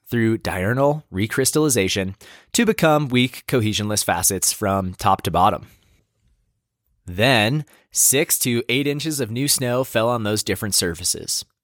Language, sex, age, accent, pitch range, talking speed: English, male, 20-39, American, 110-145 Hz, 130 wpm